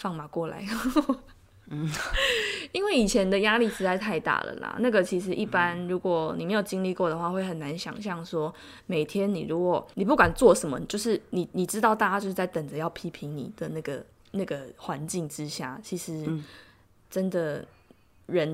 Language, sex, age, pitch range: Chinese, female, 20-39, 160-205 Hz